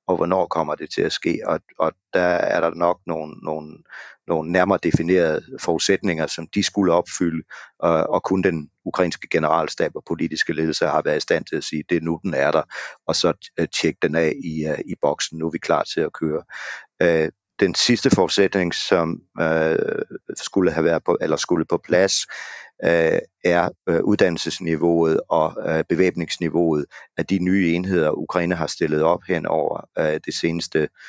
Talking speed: 170 wpm